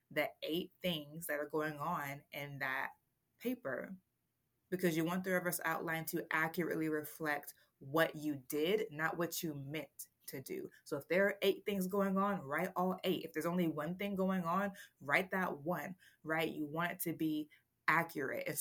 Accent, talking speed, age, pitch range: American, 185 wpm, 20-39, 150-185 Hz